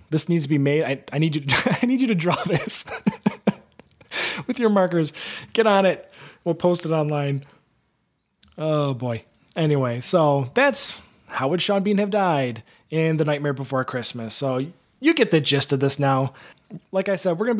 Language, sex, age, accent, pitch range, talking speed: English, male, 20-39, American, 135-175 Hz, 190 wpm